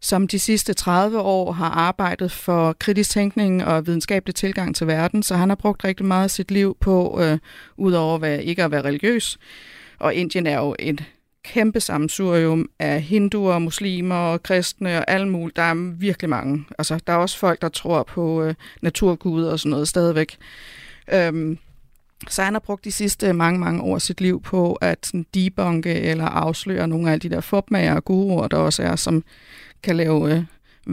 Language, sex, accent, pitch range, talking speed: Danish, female, native, 160-195 Hz, 185 wpm